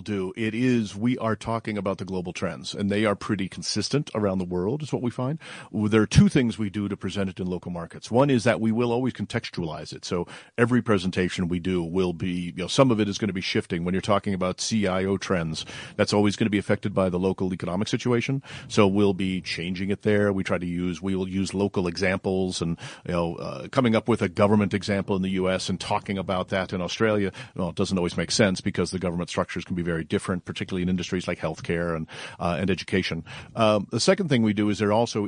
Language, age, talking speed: English, 50-69, 240 wpm